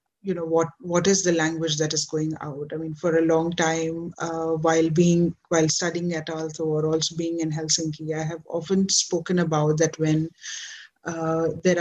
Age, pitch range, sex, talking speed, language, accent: 30-49, 165-185 Hz, female, 195 wpm, Finnish, Indian